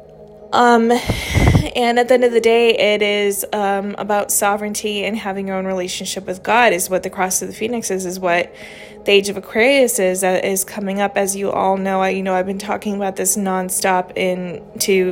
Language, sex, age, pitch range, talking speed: English, female, 20-39, 190-215 Hz, 220 wpm